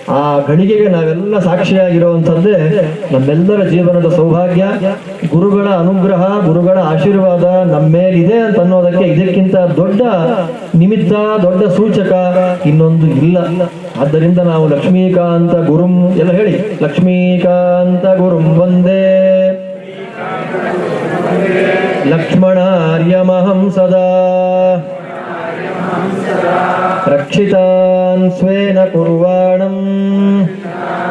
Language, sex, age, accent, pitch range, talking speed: Kannada, male, 20-39, native, 170-190 Hz, 70 wpm